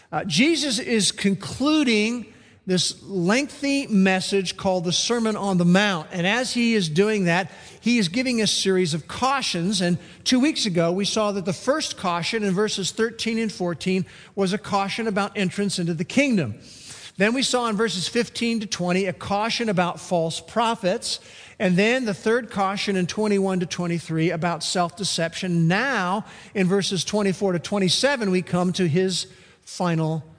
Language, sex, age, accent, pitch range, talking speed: English, male, 50-69, American, 175-220 Hz, 165 wpm